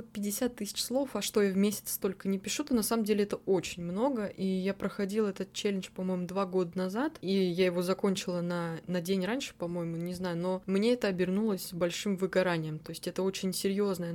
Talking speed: 210 wpm